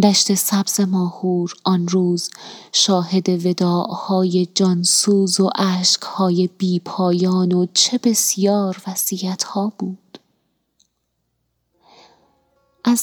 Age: 20-39